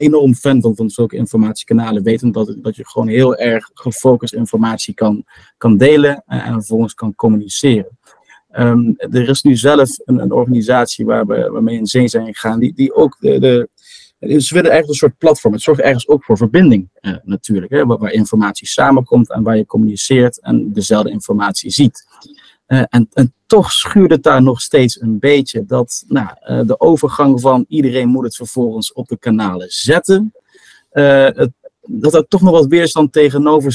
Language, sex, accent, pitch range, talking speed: Dutch, male, Dutch, 115-145 Hz, 190 wpm